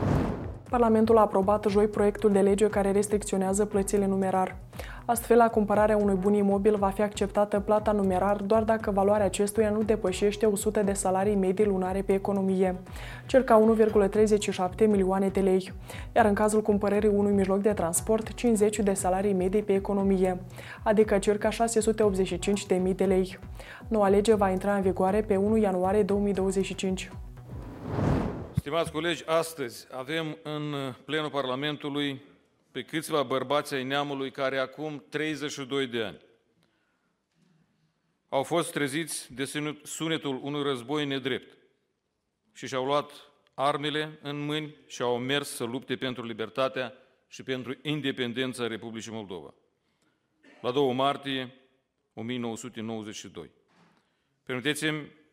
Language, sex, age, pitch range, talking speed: Romanian, female, 20-39, 140-205 Hz, 130 wpm